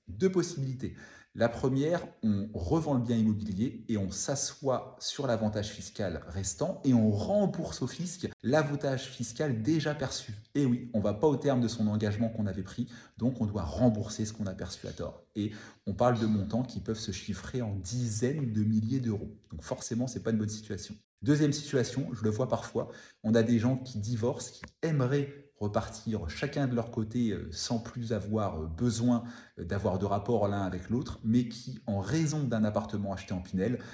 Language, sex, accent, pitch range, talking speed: French, male, French, 105-125 Hz, 195 wpm